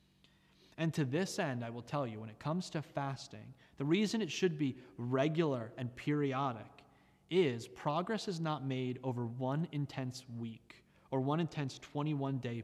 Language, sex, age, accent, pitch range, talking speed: English, male, 30-49, American, 120-150 Hz, 160 wpm